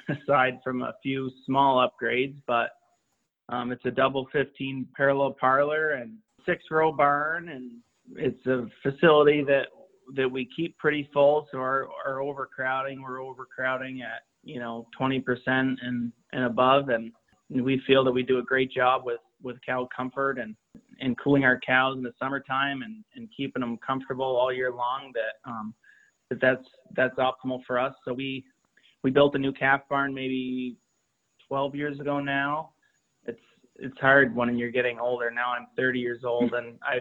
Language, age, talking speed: English, 20-39, 170 wpm